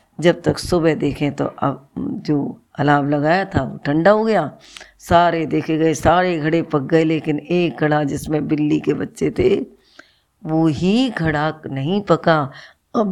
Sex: female